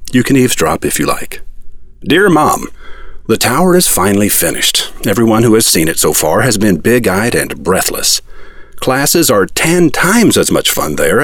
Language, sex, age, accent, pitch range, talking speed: English, male, 50-69, American, 95-130 Hz, 175 wpm